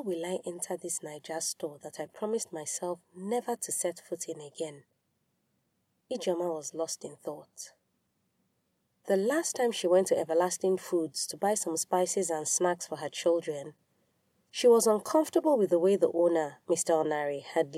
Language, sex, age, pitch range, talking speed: English, female, 30-49, 160-210 Hz, 165 wpm